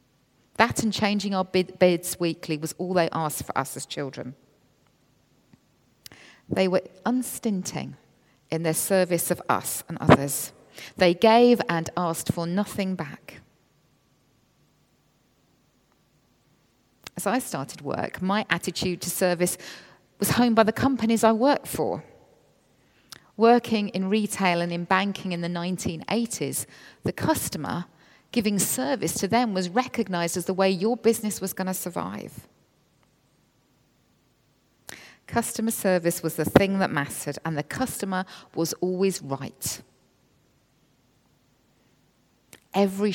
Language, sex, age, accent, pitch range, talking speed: English, female, 40-59, British, 160-200 Hz, 120 wpm